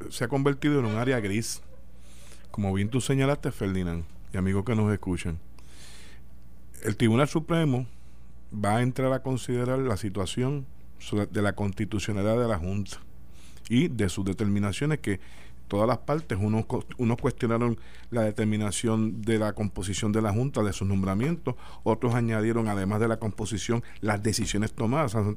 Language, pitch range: Spanish, 95-125 Hz